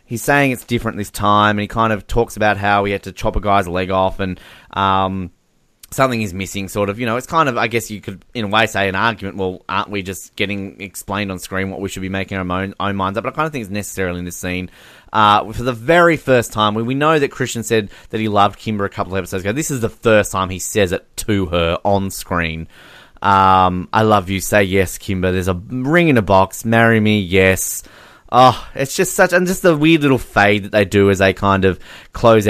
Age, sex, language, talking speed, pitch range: 20-39, male, English, 255 wpm, 95-115 Hz